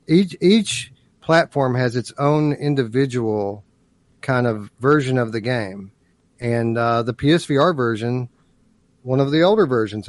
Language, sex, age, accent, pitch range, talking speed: English, male, 40-59, American, 115-150 Hz, 135 wpm